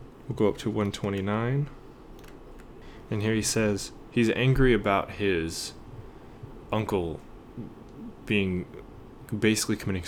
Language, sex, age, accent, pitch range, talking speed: English, male, 10-29, American, 95-120 Hz, 100 wpm